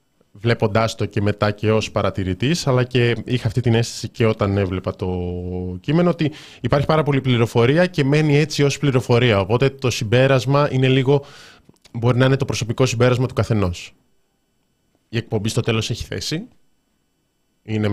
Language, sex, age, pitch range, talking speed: Greek, male, 20-39, 105-145 Hz, 160 wpm